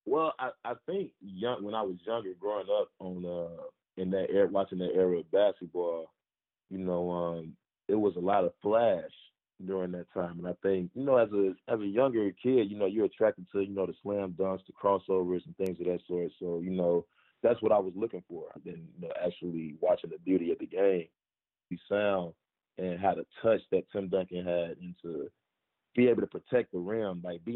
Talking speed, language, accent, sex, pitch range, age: 220 wpm, English, American, male, 90-100 Hz, 20-39